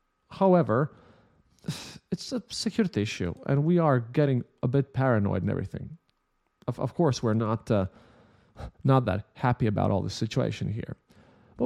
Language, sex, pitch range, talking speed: English, male, 110-145 Hz, 150 wpm